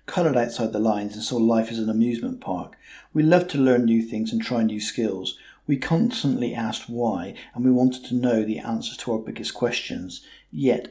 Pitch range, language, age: 115-140 Hz, English, 50-69